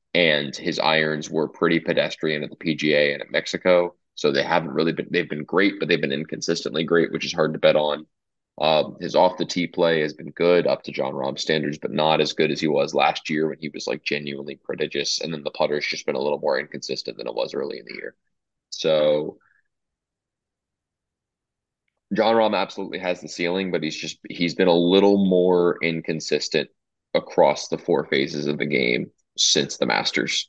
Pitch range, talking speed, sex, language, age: 75-95 Hz, 200 wpm, male, English, 20-39